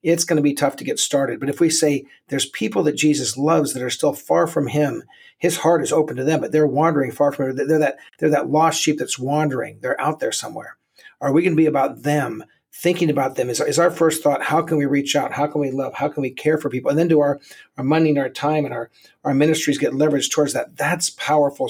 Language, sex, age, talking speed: English, male, 50-69, 250 wpm